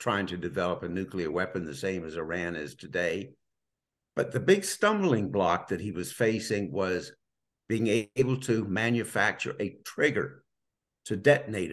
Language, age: English, 60-79